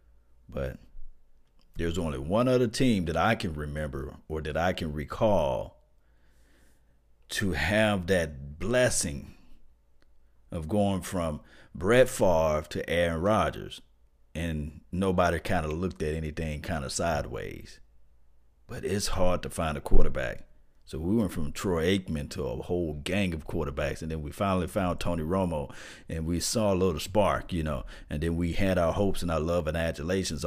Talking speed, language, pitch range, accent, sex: 160 wpm, English, 75-95 Hz, American, male